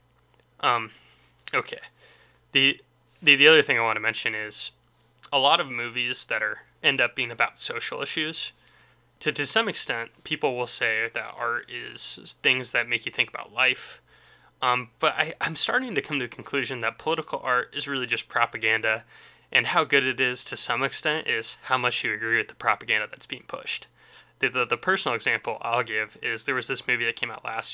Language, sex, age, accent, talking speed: English, male, 20-39, American, 200 wpm